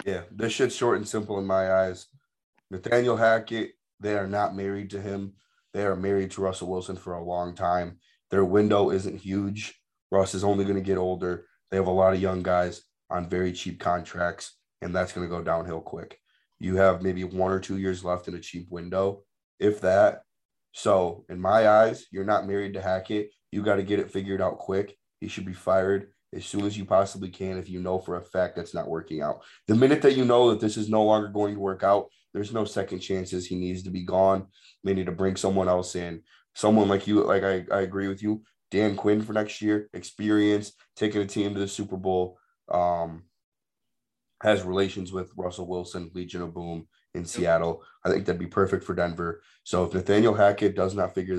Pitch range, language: 90-100 Hz, English